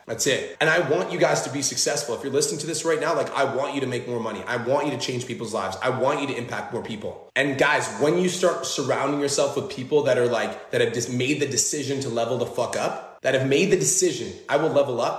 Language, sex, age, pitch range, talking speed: English, male, 20-39, 120-160 Hz, 280 wpm